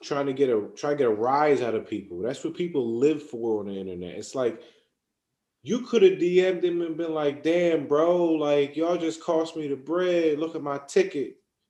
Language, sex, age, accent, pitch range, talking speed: English, male, 20-39, American, 150-235 Hz, 220 wpm